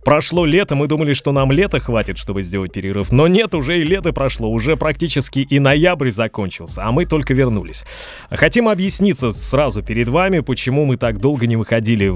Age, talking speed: 20-39, 185 wpm